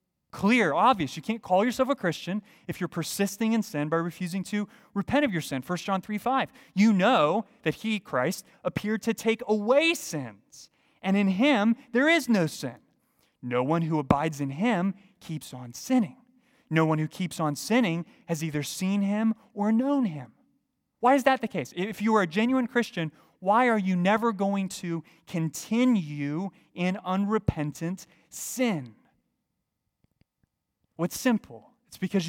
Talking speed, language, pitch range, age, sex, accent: 165 wpm, English, 160-220 Hz, 30-49, male, American